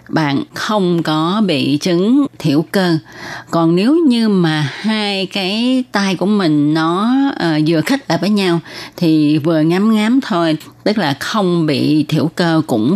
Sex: female